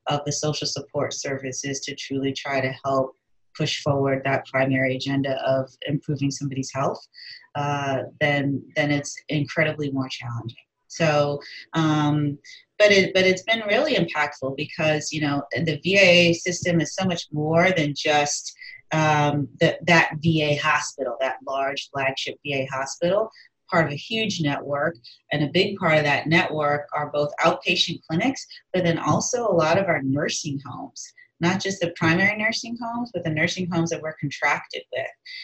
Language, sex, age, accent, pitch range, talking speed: English, female, 30-49, American, 140-165 Hz, 165 wpm